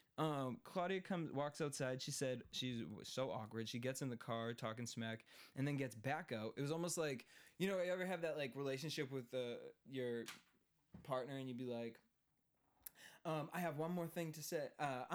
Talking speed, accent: 200 wpm, American